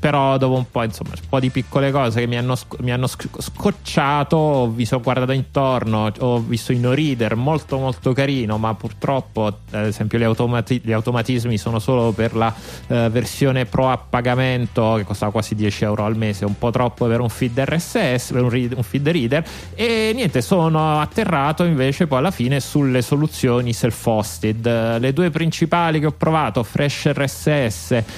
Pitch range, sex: 115-130 Hz, male